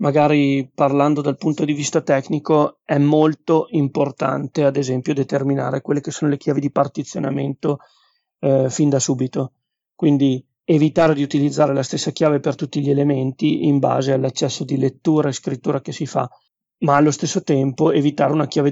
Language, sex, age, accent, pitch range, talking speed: Italian, male, 40-59, native, 135-160 Hz, 165 wpm